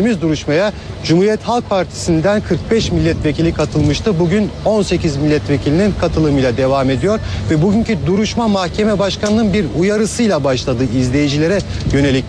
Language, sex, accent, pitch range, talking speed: Turkish, male, native, 150-200 Hz, 110 wpm